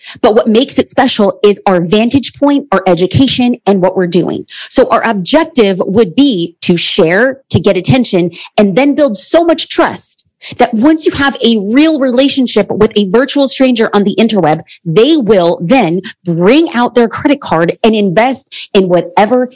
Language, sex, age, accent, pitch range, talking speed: English, female, 30-49, American, 185-245 Hz, 175 wpm